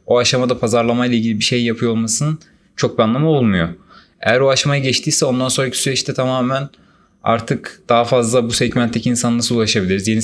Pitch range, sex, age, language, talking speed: 115-130 Hz, male, 30-49, Turkish, 170 wpm